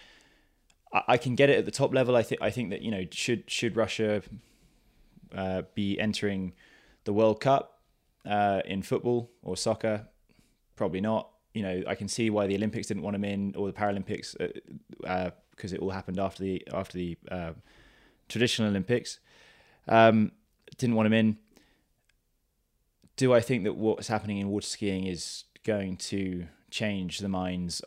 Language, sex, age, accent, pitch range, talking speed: English, male, 20-39, British, 95-110 Hz, 170 wpm